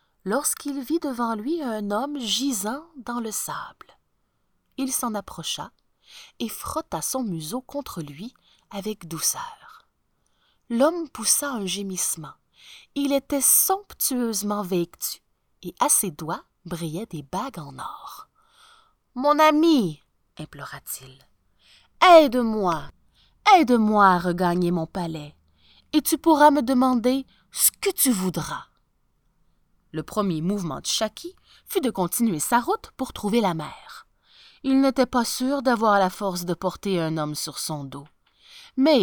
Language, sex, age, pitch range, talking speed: French, female, 30-49, 180-290 Hz, 130 wpm